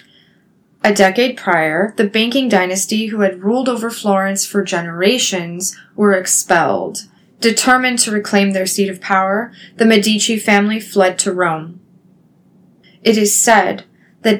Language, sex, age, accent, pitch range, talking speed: English, female, 20-39, American, 185-215 Hz, 135 wpm